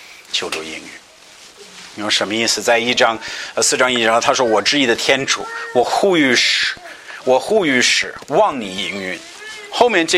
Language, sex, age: Chinese, male, 50-69